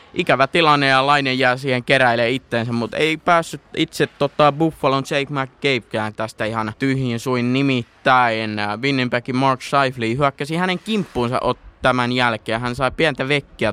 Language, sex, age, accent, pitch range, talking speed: Finnish, male, 20-39, native, 110-140 Hz, 155 wpm